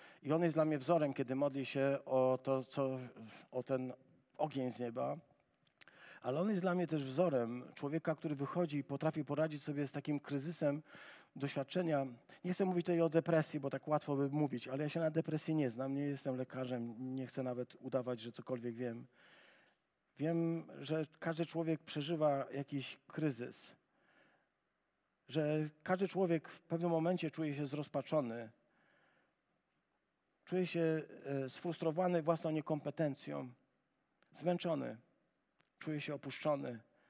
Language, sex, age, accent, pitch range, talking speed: Polish, male, 40-59, native, 130-160 Hz, 140 wpm